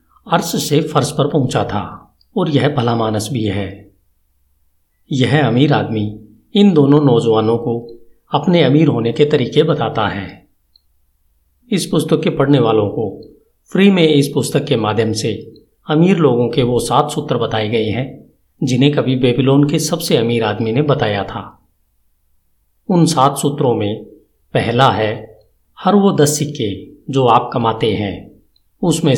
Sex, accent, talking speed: male, native, 150 wpm